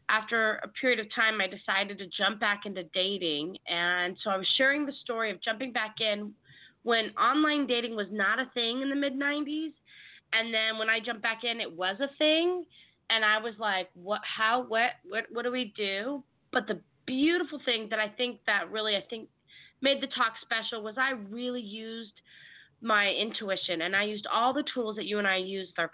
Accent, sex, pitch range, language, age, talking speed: American, female, 190-245 Hz, English, 20-39, 210 wpm